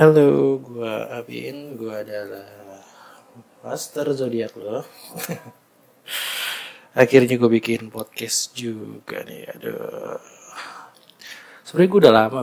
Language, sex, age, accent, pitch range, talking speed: Indonesian, male, 20-39, native, 110-125 Hz, 90 wpm